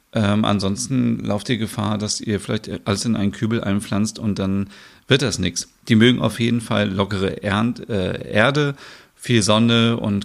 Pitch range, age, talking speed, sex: 100-125 Hz, 40-59, 175 wpm, male